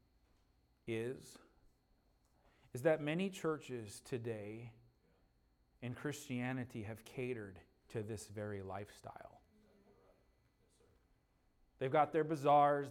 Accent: American